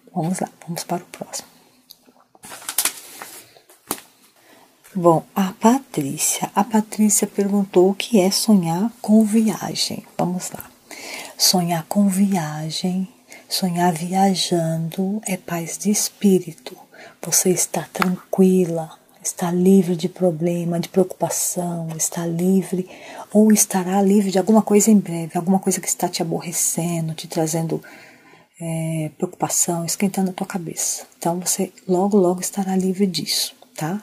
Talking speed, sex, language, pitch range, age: 120 wpm, female, Portuguese, 170-200 Hz, 40-59